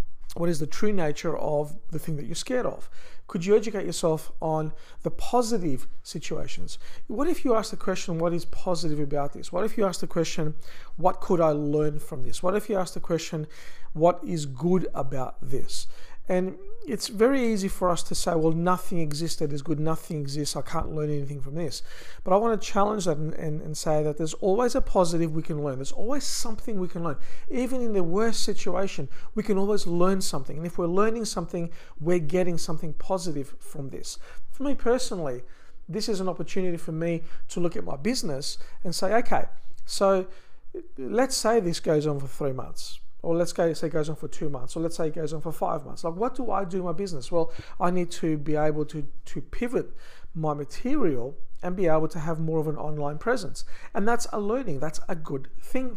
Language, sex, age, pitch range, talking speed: English, male, 50-69, 155-210 Hz, 215 wpm